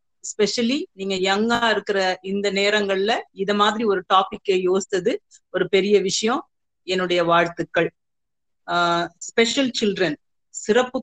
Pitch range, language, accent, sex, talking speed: 190-230 Hz, Tamil, native, female, 105 wpm